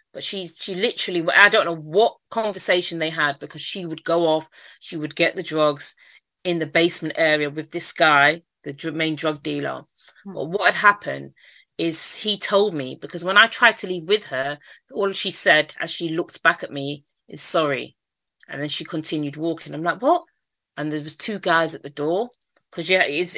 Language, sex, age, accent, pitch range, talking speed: English, female, 30-49, British, 155-190 Hz, 200 wpm